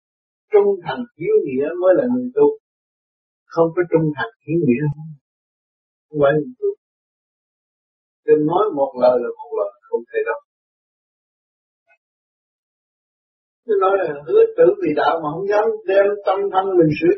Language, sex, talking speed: Vietnamese, male, 155 wpm